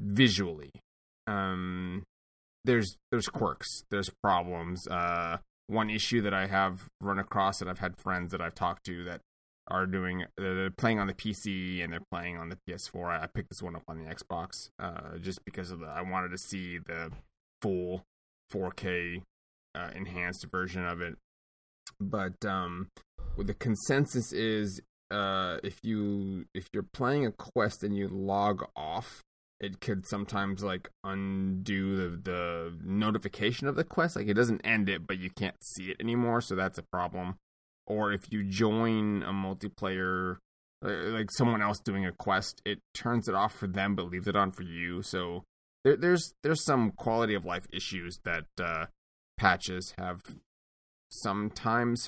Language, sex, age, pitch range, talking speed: English, male, 20-39, 90-105 Hz, 170 wpm